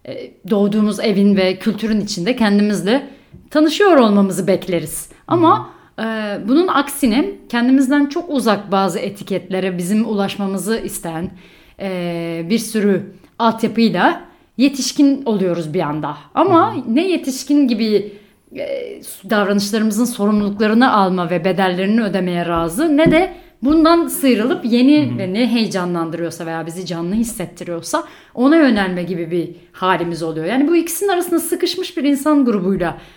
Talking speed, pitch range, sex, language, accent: 120 wpm, 185-275 Hz, female, Turkish, native